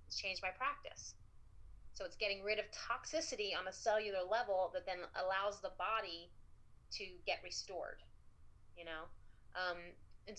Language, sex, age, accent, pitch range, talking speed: English, female, 30-49, American, 170-215 Hz, 145 wpm